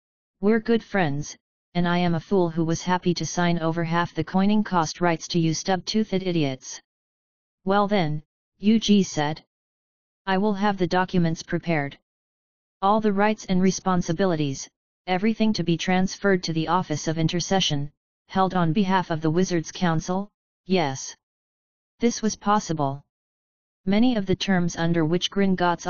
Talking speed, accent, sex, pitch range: 150 wpm, American, female, 165-195 Hz